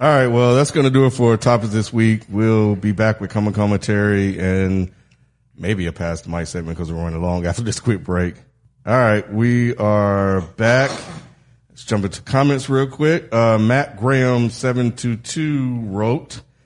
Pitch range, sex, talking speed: 100-125 Hz, male, 175 wpm